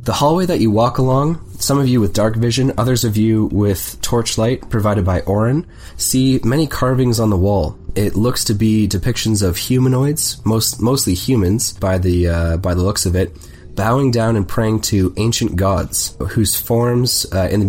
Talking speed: 185 wpm